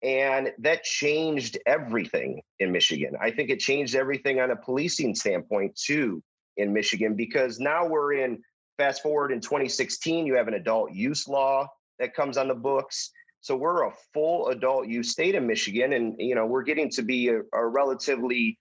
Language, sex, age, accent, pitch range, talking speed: English, male, 30-49, American, 125-160 Hz, 180 wpm